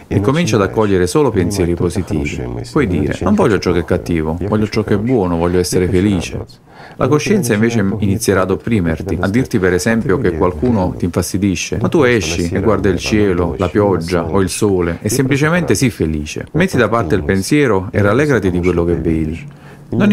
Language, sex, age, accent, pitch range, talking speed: Italian, male, 40-59, native, 90-115 Hz, 195 wpm